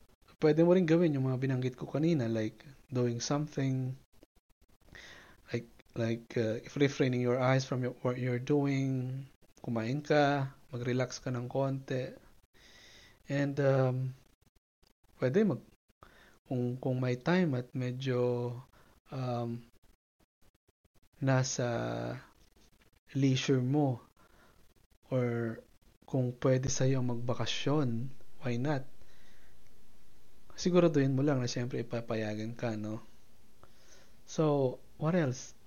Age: 20-39